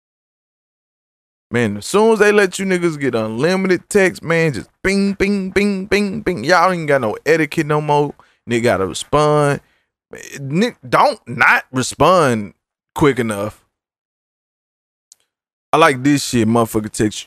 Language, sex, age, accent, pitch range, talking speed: English, male, 20-39, American, 110-170 Hz, 135 wpm